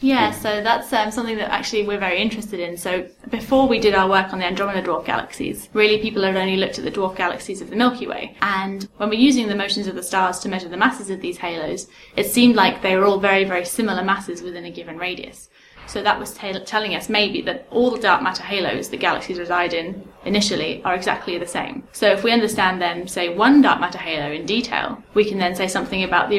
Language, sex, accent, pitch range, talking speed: English, female, British, 185-215 Hz, 240 wpm